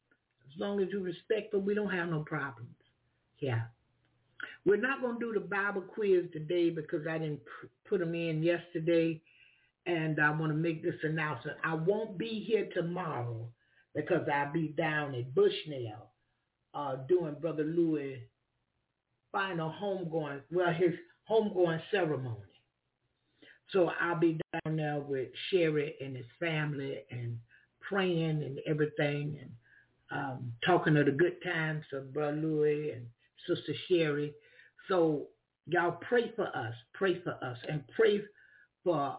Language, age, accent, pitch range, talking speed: English, 60-79, American, 145-185 Hz, 145 wpm